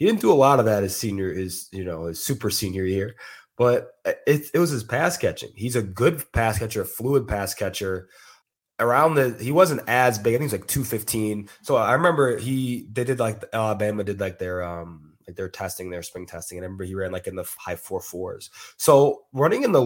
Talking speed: 225 wpm